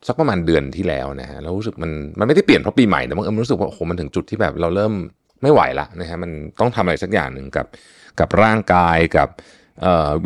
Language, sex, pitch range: Thai, male, 80-115 Hz